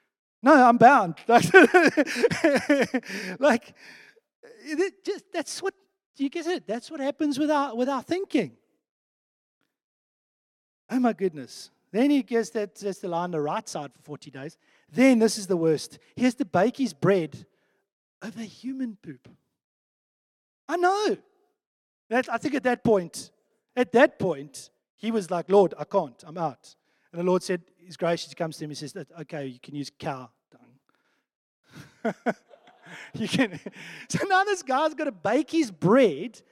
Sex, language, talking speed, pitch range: male, English, 160 wpm, 185-300 Hz